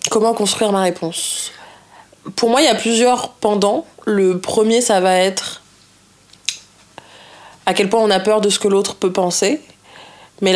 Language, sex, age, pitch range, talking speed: French, female, 20-39, 180-215 Hz, 165 wpm